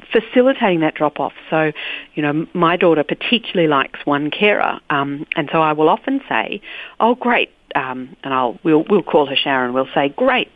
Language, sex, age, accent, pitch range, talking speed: English, female, 50-69, Australian, 150-225 Hz, 190 wpm